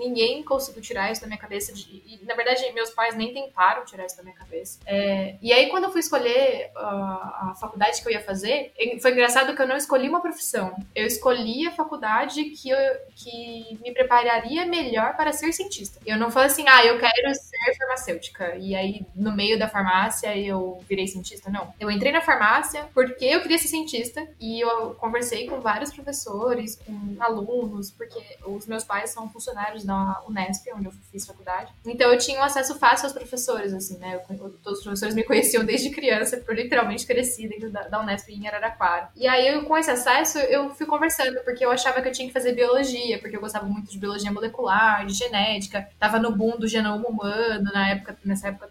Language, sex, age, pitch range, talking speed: Portuguese, female, 10-29, 205-265 Hz, 205 wpm